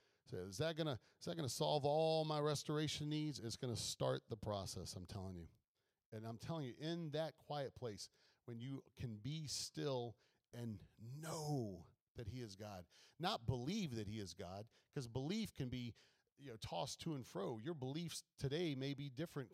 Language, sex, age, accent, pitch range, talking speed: English, male, 40-59, American, 120-160 Hz, 185 wpm